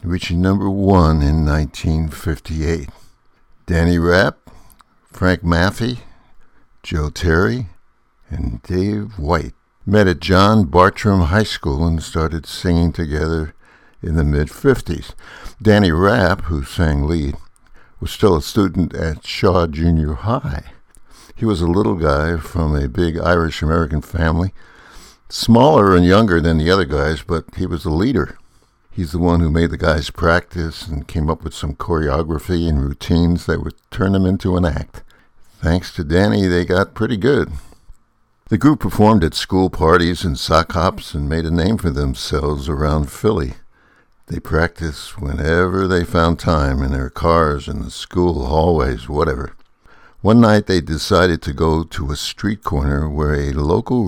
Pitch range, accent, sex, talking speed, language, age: 75-95 Hz, American, male, 150 wpm, English, 60-79